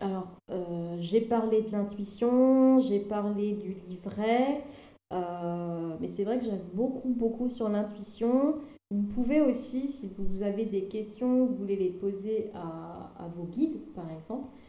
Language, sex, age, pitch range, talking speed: French, female, 30-49, 190-240 Hz, 155 wpm